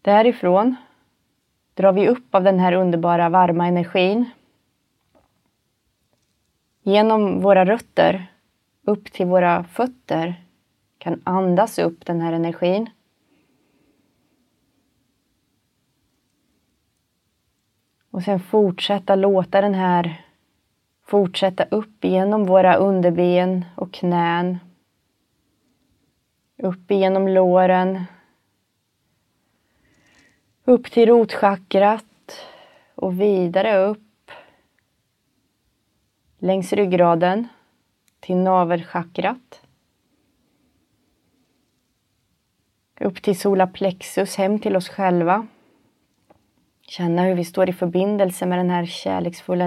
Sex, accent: female, native